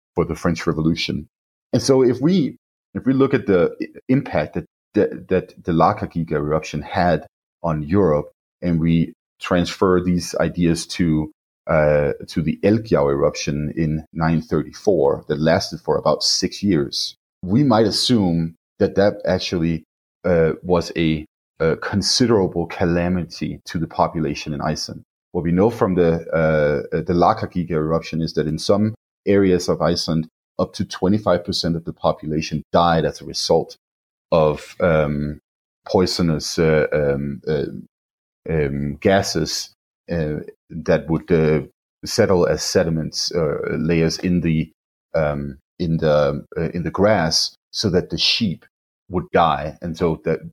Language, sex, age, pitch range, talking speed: English, male, 30-49, 80-90 Hz, 145 wpm